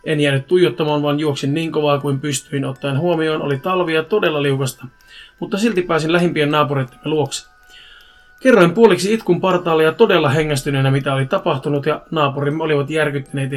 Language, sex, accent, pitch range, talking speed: Finnish, male, native, 140-175 Hz, 155 wpm